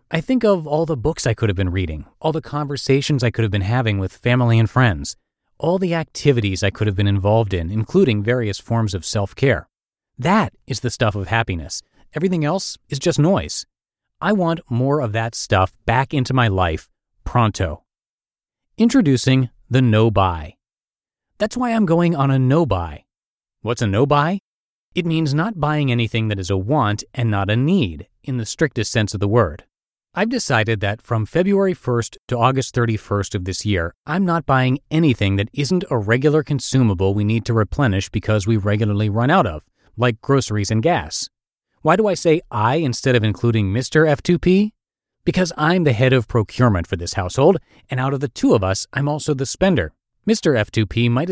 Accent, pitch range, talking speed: American, 105-150 Hz, 185 wpm